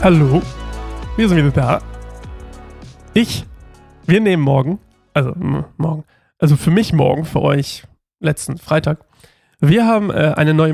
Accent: German